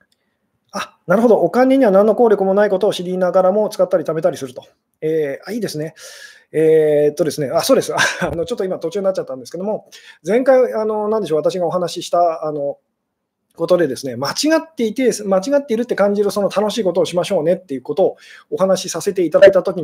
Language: Japanese